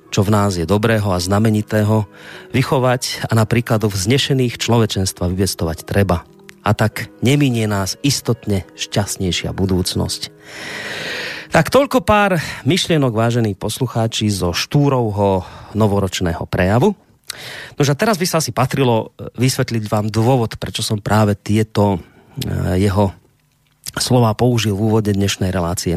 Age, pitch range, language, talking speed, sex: 40-59, 95-125 Hz, Slovak, 120 wpm, male